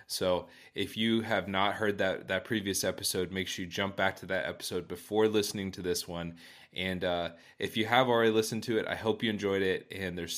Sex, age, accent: male, 20-39, American